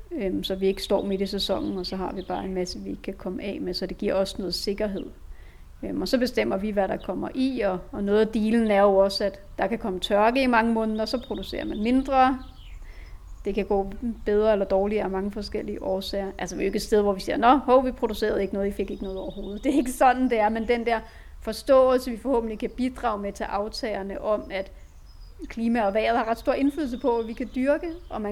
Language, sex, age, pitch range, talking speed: Danish, female, 30-49, 195-245 Hz, 250 wpm